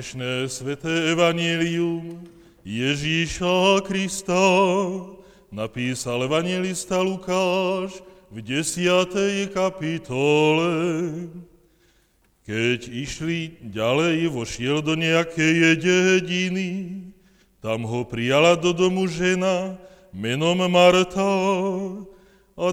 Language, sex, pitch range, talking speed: Slovak, male, 160-185 Hz, 70 wpm